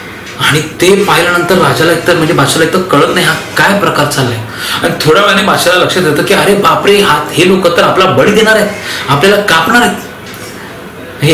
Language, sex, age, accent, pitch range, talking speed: Marathi, male, 30-49, native, 140-195 Hz, 180 wpm